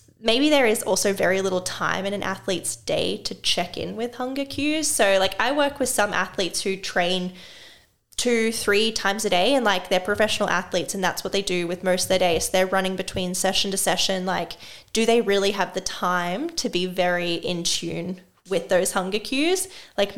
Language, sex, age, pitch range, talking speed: English, female, 10-29, 180-220 Hz, 210 wpm